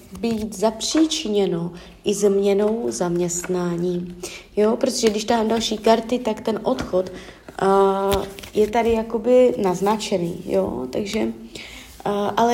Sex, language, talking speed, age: female, Czech, 110 wpm, 30-49